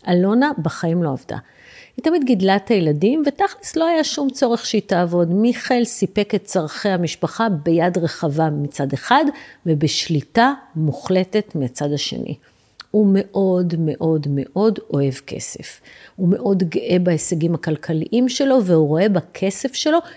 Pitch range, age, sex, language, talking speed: 165-235 Hz, 50-69, female, Hebrew, 135 wpm